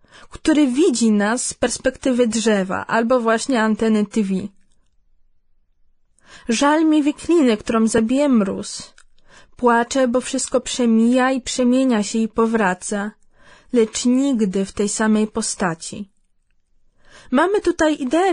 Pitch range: 225-290 Hz